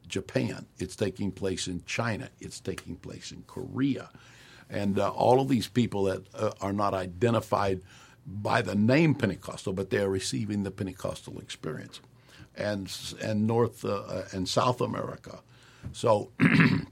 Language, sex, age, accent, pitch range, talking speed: English, male, 60-79, American, 95-125 Hz, 150 wpm